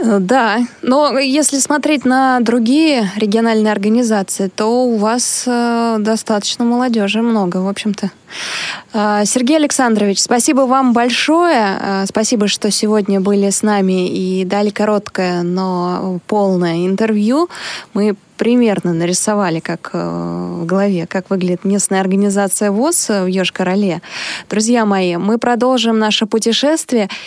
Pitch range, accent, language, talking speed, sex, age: 195-240 Hz, native, Russian, 120 wpm, female, 20-39